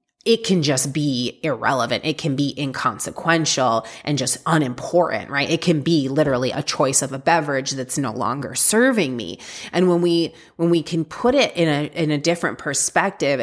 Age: 30-49